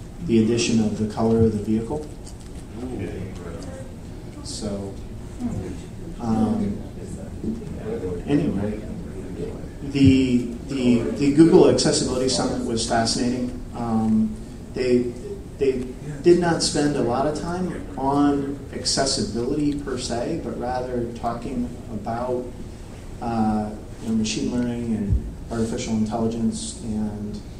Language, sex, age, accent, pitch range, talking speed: English, male, 30-49, American, 105-120 Hz, 100 wpm